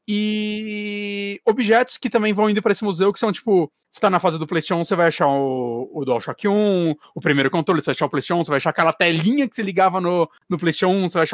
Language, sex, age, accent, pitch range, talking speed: Portuguese, male, 30-49, Brazilian, 175-255 Hz, 255 wpm